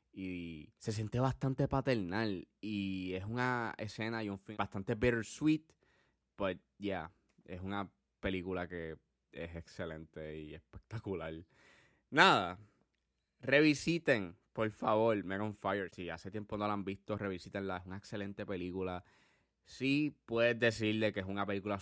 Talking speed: 140 wpm